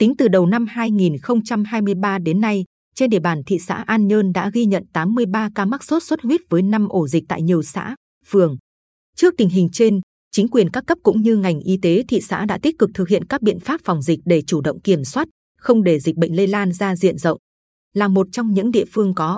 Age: 20-39